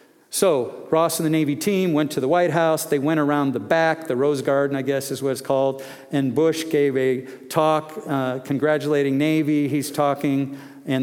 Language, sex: English, male